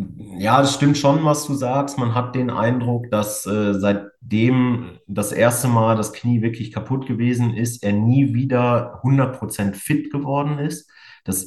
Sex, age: male, 30-49